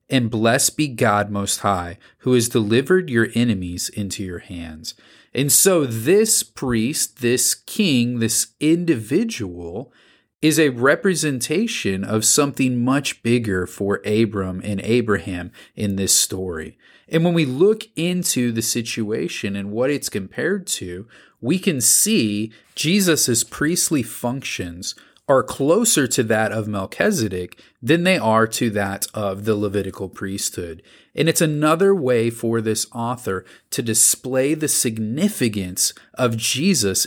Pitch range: 105-145 Hz